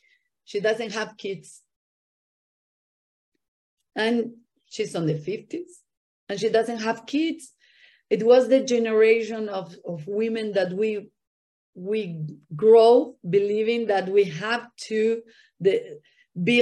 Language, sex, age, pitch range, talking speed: English, female, 40-59, 175-240 Hz, 115 wpm